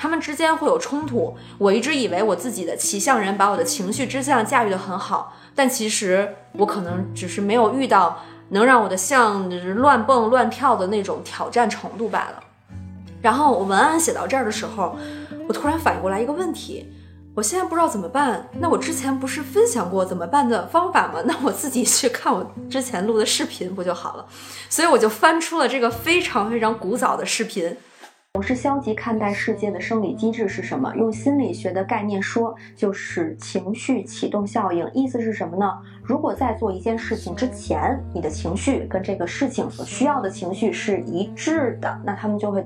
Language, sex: Chinese, female